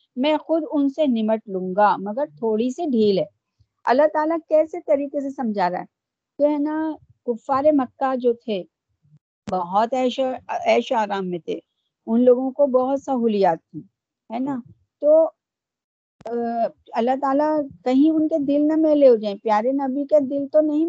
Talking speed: 160 wpm